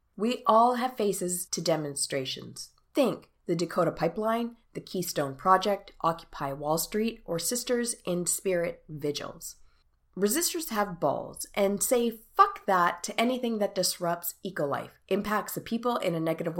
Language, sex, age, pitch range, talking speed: English, female, 30-49, 165-230 Hz, 140 wpm